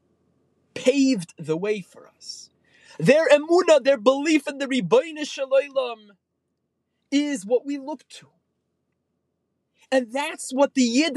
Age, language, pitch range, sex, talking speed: 30-49, English, 175-270 Hz, male, 125 wpm